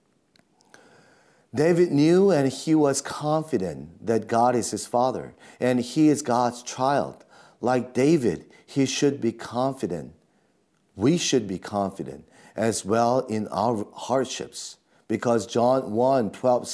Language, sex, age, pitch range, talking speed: English, male, 40-59, 110-135 Hz, 120 wpm